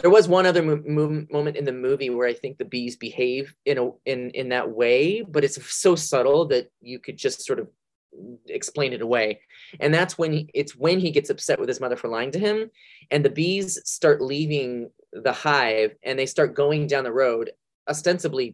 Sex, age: male, 30-49